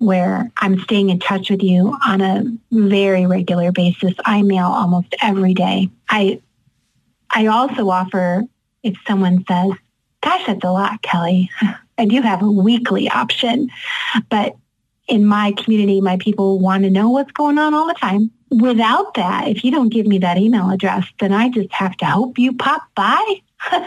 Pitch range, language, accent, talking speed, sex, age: 190-235 Hz, English, American, 175 wpm, female, 30-49